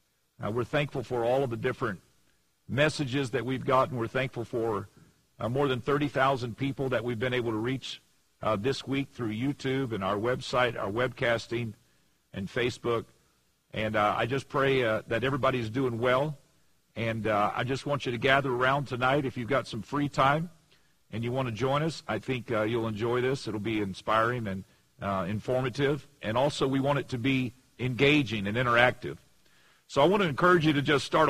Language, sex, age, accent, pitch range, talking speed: English, male, 50-69, American, 115-140 Hz, 195 wpm